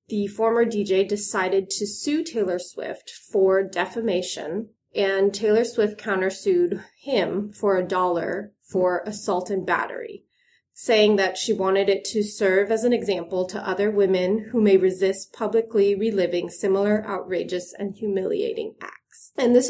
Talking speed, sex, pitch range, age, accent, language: 145 wpm, female, 190-230 Hz, 30-49, American, English